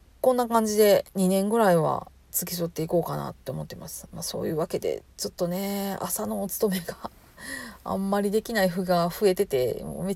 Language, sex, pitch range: Japanese, female, 170-215 Hz